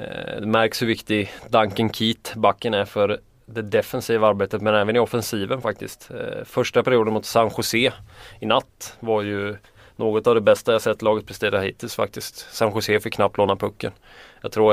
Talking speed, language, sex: 175 wpm, Swedish, male